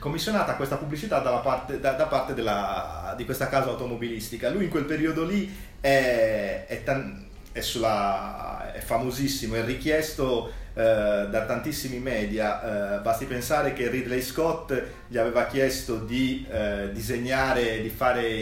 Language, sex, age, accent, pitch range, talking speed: Italian, male, 30-49, native, 110-155 Hz, 125 wpm